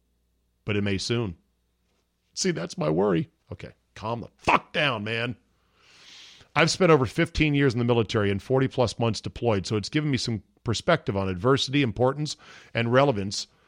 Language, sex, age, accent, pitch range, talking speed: English, male, 40-59, American, 105-145 Hz, 160 wpm